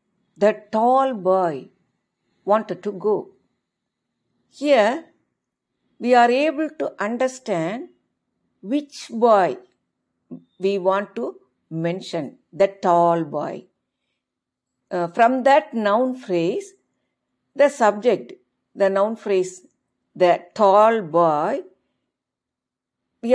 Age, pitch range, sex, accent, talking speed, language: 50-69, 195-265 Hz, female, native, 90 wpm, Tamil